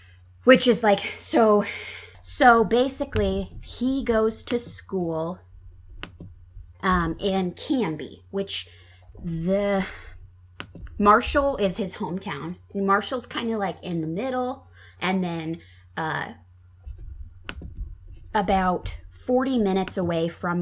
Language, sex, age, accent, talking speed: English, female, 20-39, American, 100 wpm